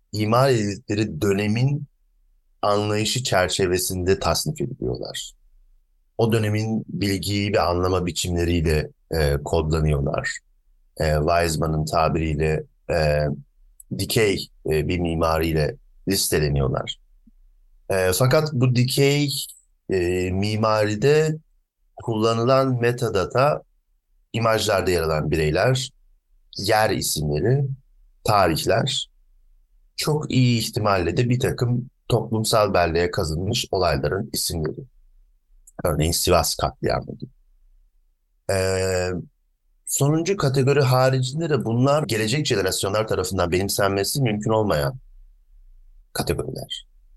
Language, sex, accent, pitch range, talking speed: Turkish, male, native, 80-125 Hz, 85 wpm